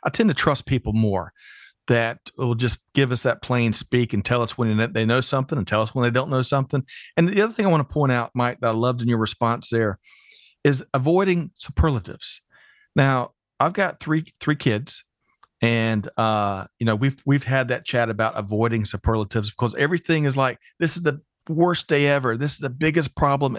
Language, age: English, 40-59